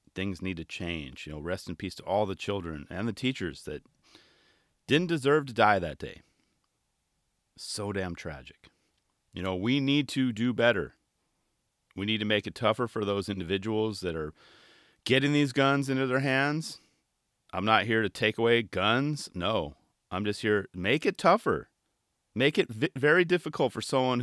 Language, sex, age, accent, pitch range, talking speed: English, male, 40-59, American, 95-130 Hz, 175 wpm